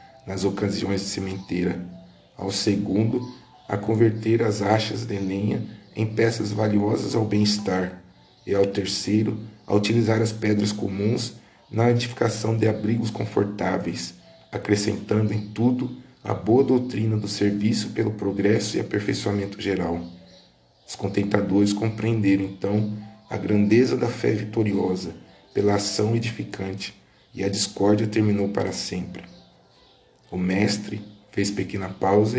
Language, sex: Portuguese, male